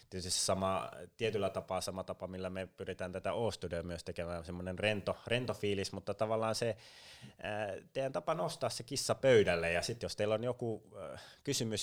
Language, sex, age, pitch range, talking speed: Finnish, male, 20-39, 90-105 Hz, 150 wpm